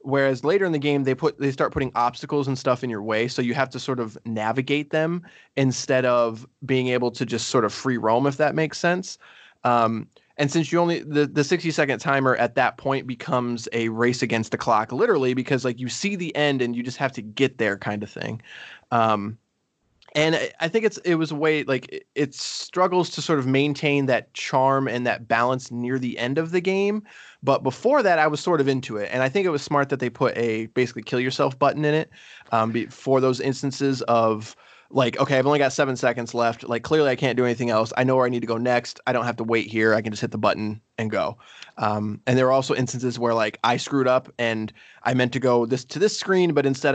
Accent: American